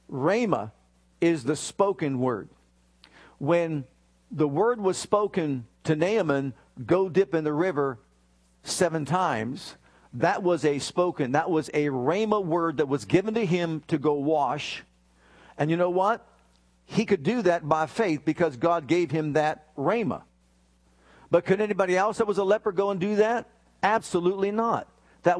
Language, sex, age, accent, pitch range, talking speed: English, male, 50-69, American, 145-185 Hz, 160 wpm